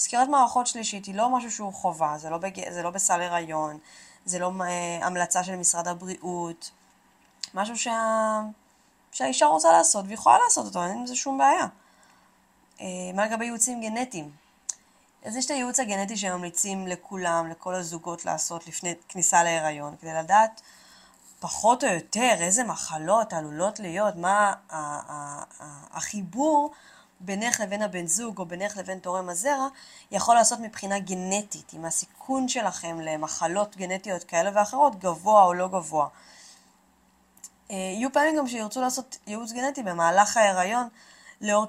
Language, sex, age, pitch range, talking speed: Hebrew, female, 20-39, 175-225 Hz, 145 wpm